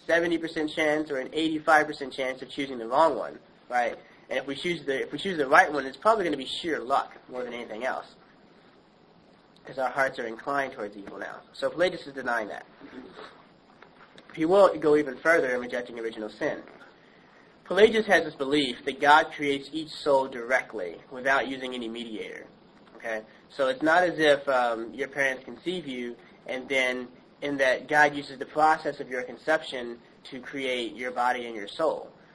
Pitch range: 130-155 Hz